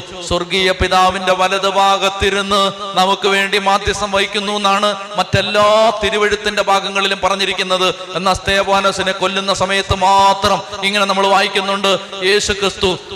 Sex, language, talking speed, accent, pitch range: male, Malayalam, 100 wpm, native, 175-195 Hz